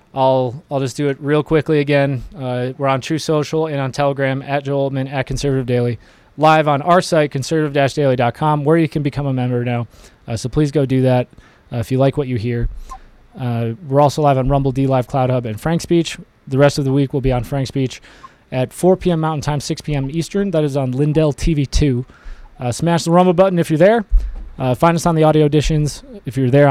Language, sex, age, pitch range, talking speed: English, male, 20-39, 125-155 Hz, 230 wpm